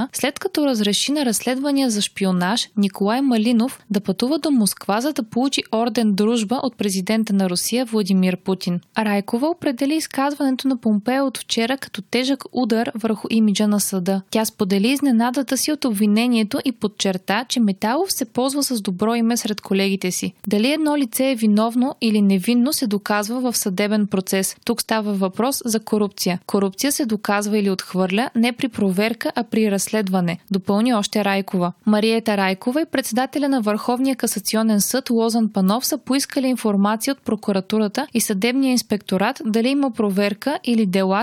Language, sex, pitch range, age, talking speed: Bulgarian, female, 205-255 Hz, 20-39, 165 wpm